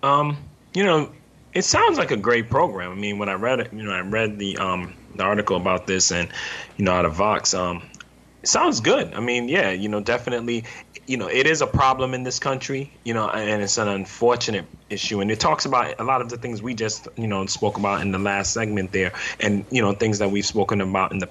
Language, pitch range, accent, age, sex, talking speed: English, 100-120 Hz, American, 30-49, male, 245 wpm